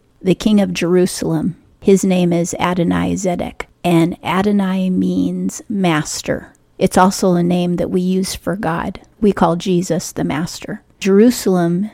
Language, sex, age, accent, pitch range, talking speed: English, female, 40-59, American, 170-190 Hz, 140 wpm